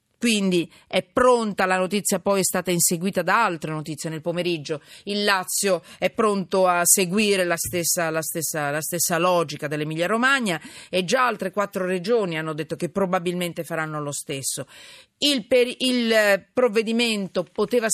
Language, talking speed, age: Italian, 140 wpm, 40-59